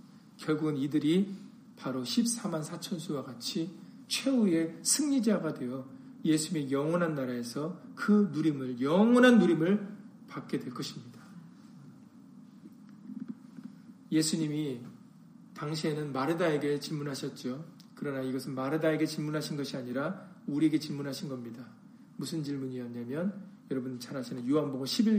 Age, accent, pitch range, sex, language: 40-59, native, 145-220 Hz, male, Korean